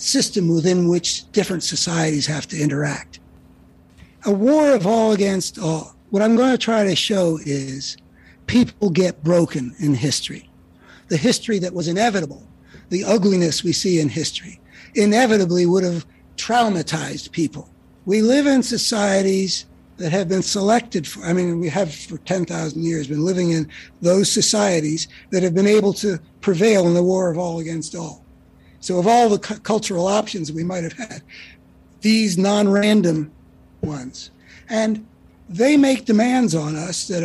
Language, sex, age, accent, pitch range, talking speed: English, male, 60-79, American, 155-205 Hz, 155 wpm